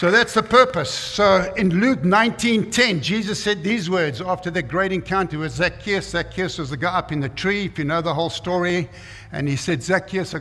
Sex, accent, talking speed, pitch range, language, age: male, South African, 215 wpm, 140-180 Hz, English, 60-79